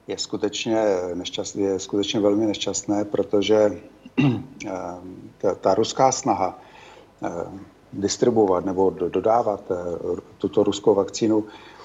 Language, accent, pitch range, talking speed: Czech, native, 95-110 Hz, 80 wpm